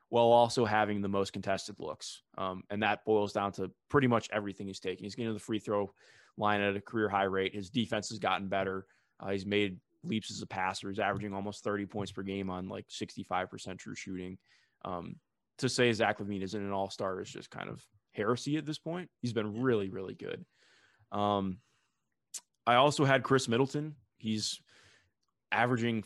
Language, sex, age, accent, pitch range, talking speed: English, male, 20-39, American, 100-120 Hz, 195 wpm